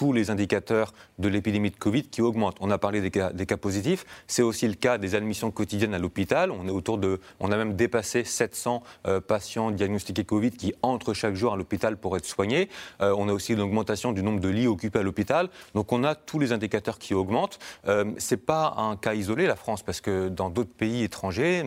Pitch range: 100-120 Hz